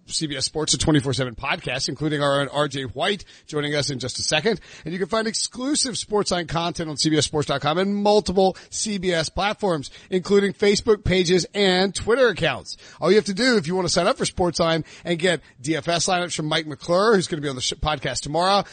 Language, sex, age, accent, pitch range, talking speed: English, male, 40-59, American, 150-195 Hz, 200 wpm